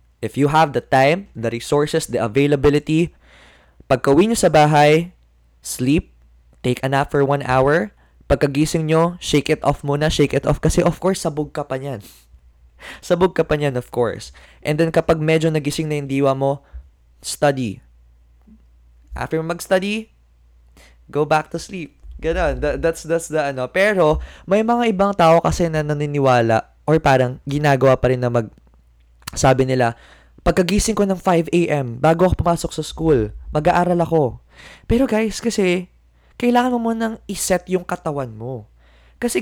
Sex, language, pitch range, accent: male, Filipino, 115-165 Hz, native